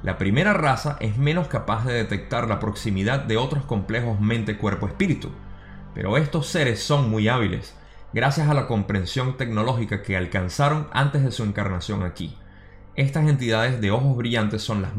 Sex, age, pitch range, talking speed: male, 20-39, 100-140 Hz, 155 wpm